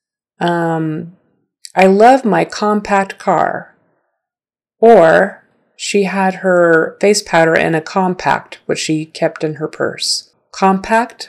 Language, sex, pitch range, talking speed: English, female, 165-195 Hz, 115 wpm